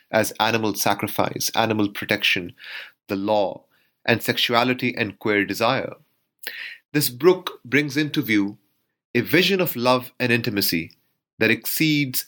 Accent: Indian